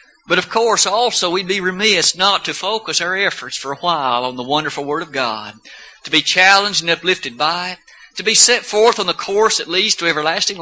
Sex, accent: male, American